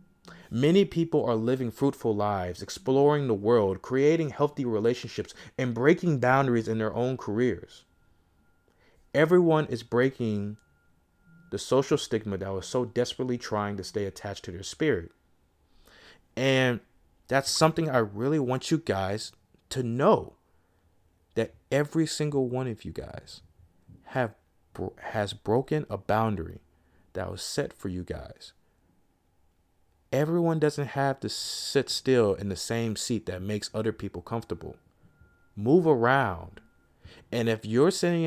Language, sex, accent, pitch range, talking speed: English, male, American, 95-135 Hz, 135 wpm